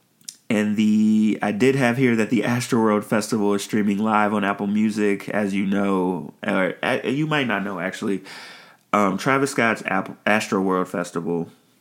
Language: English